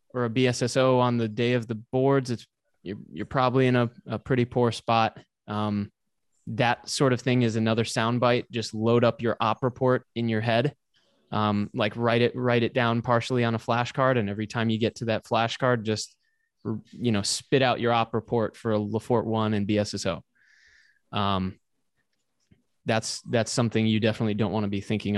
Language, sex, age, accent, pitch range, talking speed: English, male, 20-39, American, 105-125 Hz, 190 wpm